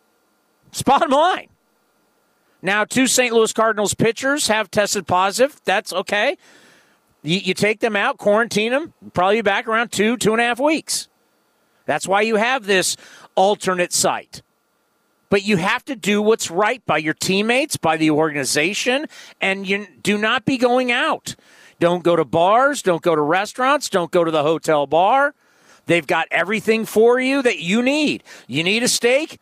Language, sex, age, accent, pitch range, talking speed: English, male, 40-59, American, 175-245 Hz, 170 wpm